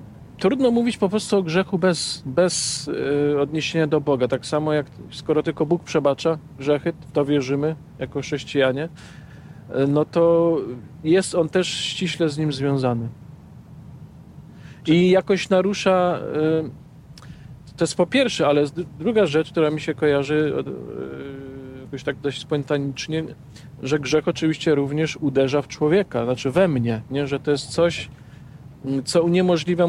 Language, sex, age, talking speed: Polish, male, 40-59, 135 wpm